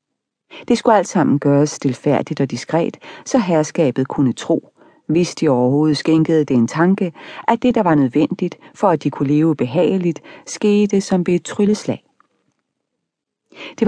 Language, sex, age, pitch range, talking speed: Danish, female, 40-59, 145-195 Hz, 155 wpm